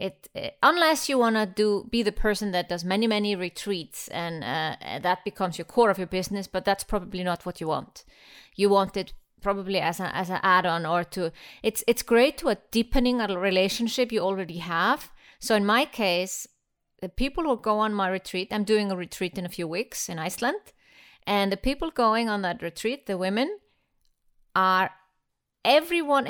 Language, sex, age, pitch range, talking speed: English, female, 30-49, 185-230 Hz, 190 wpm